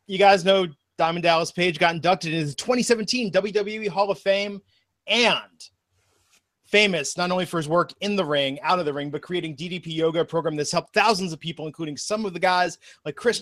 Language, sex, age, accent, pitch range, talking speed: English, male, 30-49, American, 155-190 Hz, 205 wpm